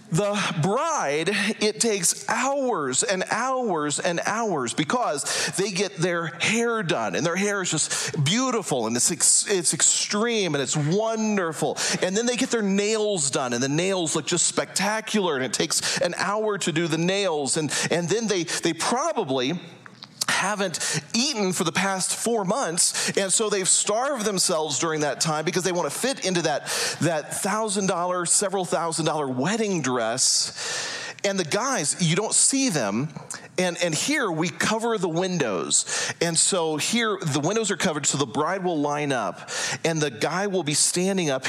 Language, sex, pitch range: English, male, 155-205 Hz